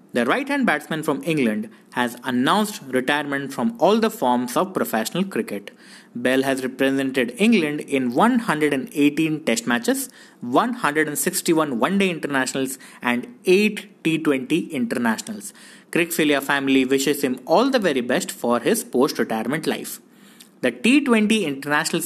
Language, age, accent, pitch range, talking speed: English, 20-39, Indian, 130-210 Hz, 120 wpm